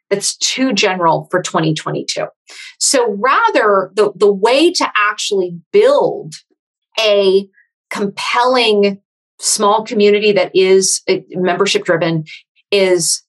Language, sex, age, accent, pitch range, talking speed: English, female, 30-49, American, 190-265 Hz, 100 wpm